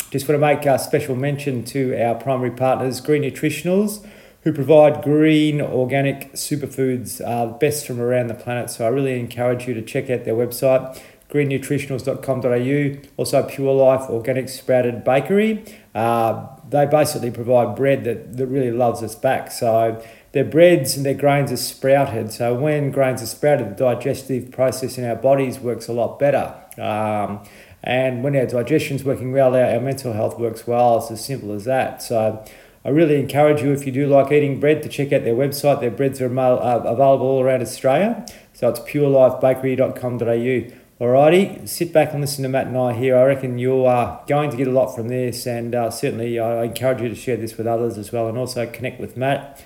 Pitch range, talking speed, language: 120-140 Hz, 190 wpm, English